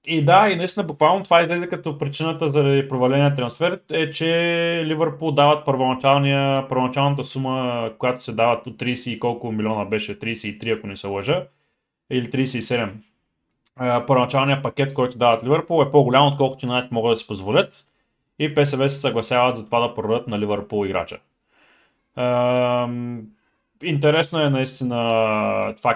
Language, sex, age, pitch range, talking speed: Bulgarian, male, 20-39, 120-155 Hz, 150 wpm